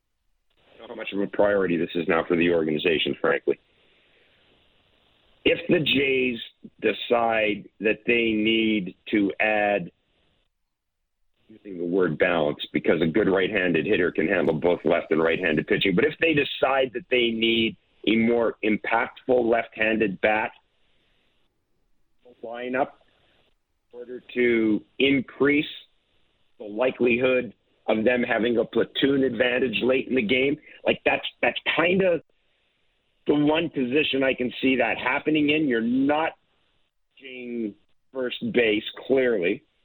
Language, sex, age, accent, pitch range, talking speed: English, male, 50-69, American, 110-135 Hz, 135 wpm